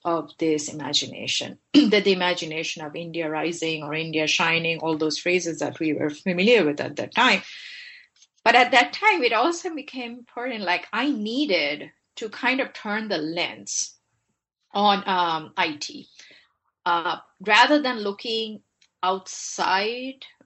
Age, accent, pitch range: 30-49, Indian, 165-220 Hz